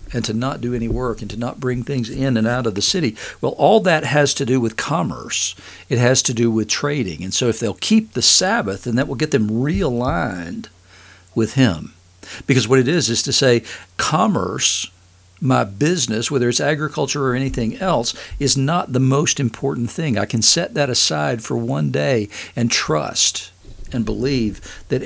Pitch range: 110-135 Hz